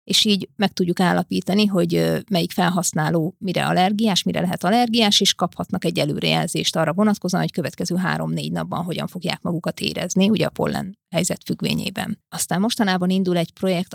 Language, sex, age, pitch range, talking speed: Hungarian, female, 30-49, 175-205 Hz, 160 wpm